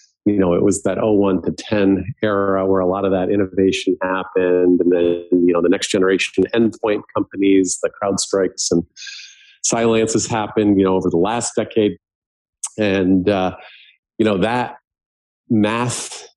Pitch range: 90-105 Hz